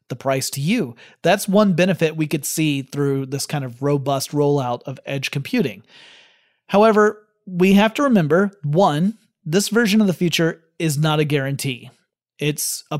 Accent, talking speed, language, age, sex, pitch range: American, 160 wpm, English, 30-49, male, 140-180 Hz